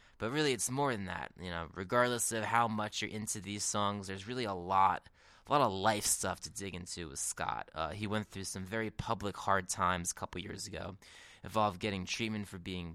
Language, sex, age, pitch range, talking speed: English, male, 20-39, 90-110 Hz, 225 wpm